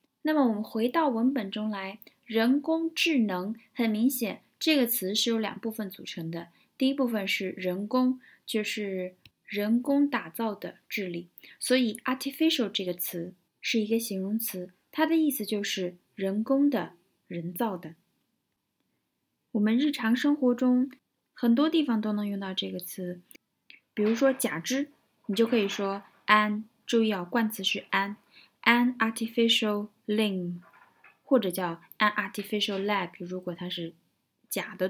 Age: 20-39